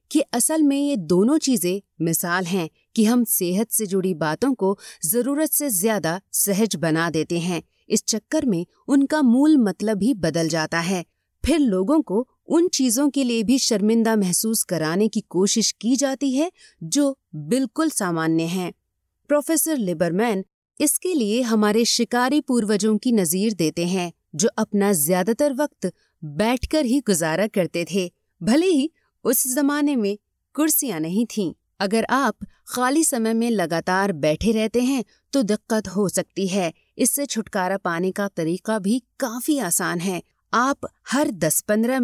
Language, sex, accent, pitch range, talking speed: Hindi, female, native, 185-265 Hz, 150 wpm